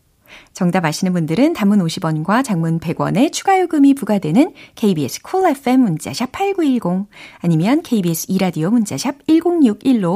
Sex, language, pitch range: female, Korean, 165-270 Hz